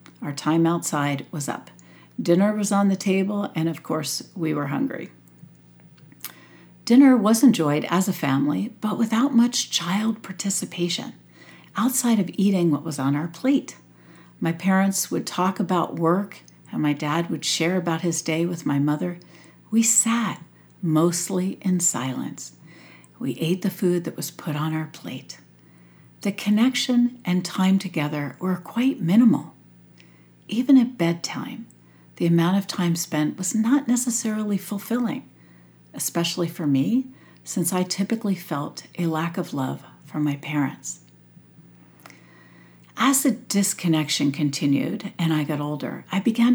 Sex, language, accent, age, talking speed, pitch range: female, English, American, 60-79, 145 wpm, 145-205 Hz